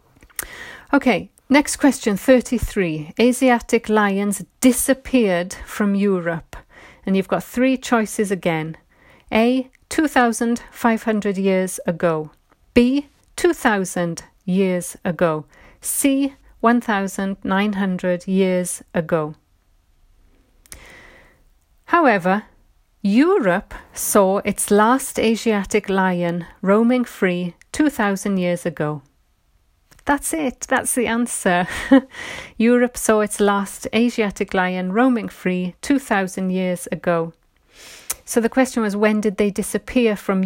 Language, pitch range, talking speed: English, 185-235 Hz, 95 wpm